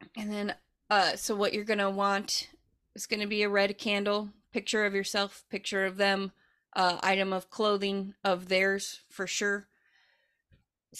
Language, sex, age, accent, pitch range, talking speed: English, female, 30-49, American, 190-225 Hz, 170 wpm